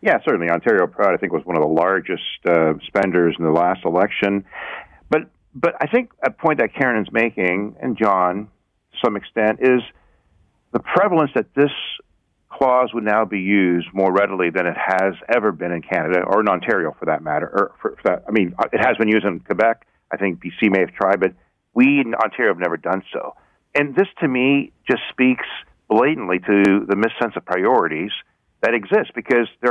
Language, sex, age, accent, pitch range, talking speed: English, male, 50-69, American, 90-115 Hz, 200 wpm